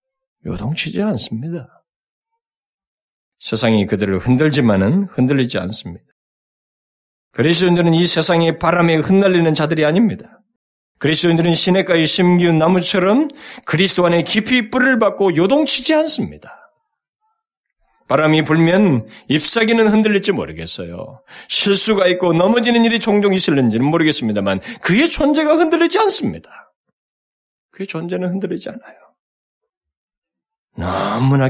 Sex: male